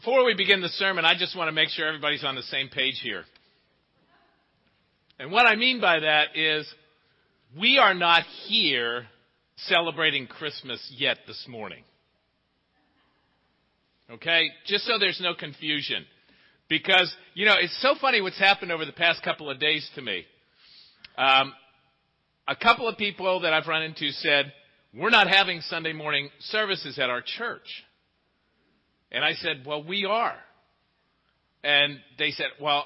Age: 50-69